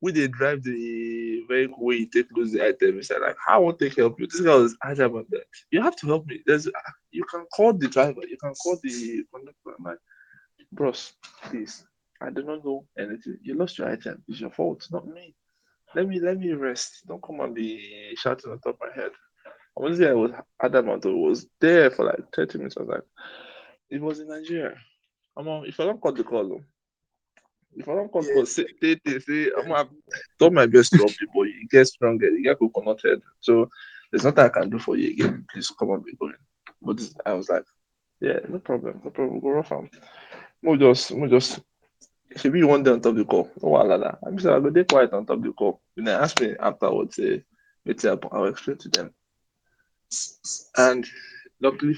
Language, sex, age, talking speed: English, male, 20-39, 230 wpm